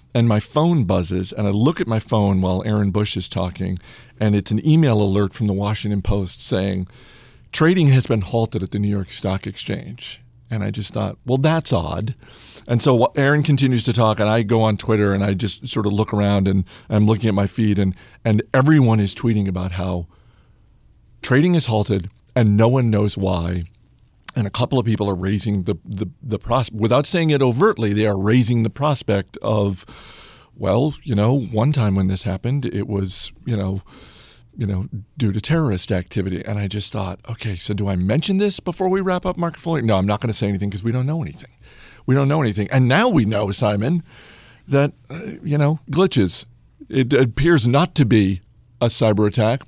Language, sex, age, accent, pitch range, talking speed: English, male, 40-59, American, 100-130 Hz, 205 wpm